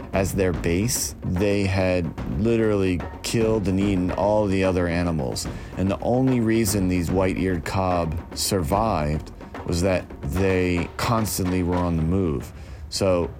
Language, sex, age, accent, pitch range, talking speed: English, male, 30-49, American, 85-100 Hz, 135 wpm